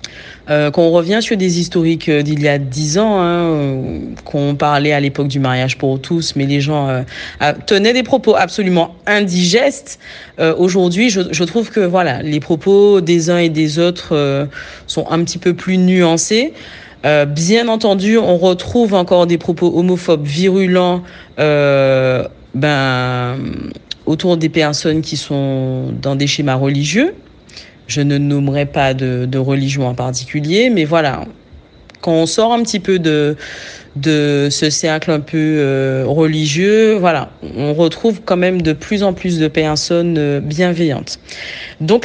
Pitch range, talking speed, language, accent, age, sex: 145-185 Hz, 155 wpm, French, French, 30-49, female